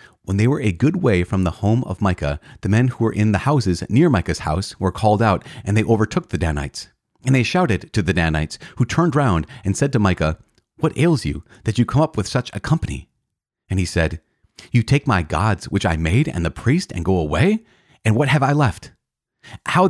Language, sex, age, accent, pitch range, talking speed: English, male, 30-49, American, 85-120 Hz, 225 wpm